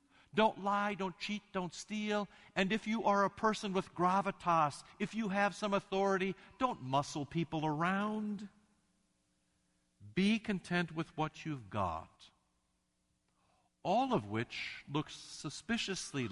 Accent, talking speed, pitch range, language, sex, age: American, 125 wpm, 125-190 Hz, English, male, 50-69